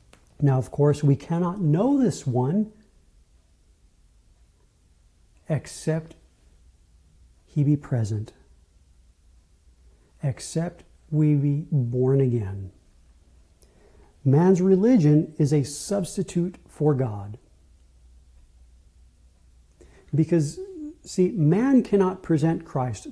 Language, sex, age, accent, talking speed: English, male, 50-69, American, 80 wpm